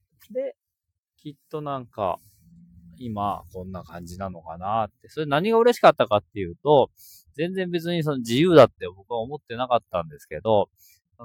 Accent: native